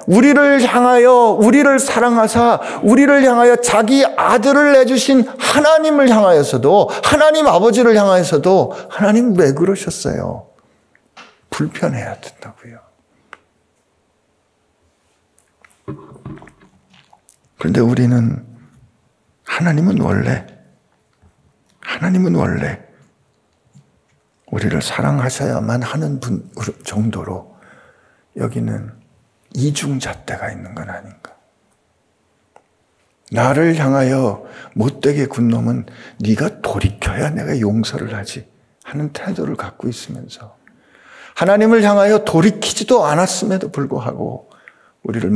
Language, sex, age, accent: Korean, male, 50-69, native